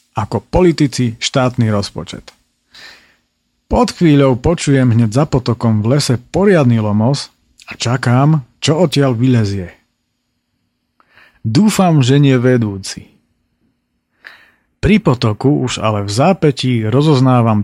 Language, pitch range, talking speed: Slovak, 110-150 Hz, 100 wpm